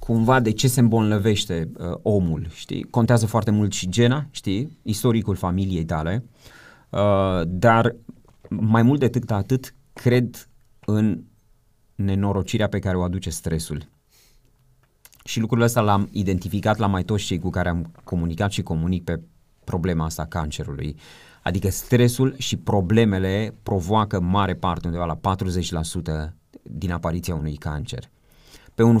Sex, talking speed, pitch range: male, 135 wpm, 90-115 Hz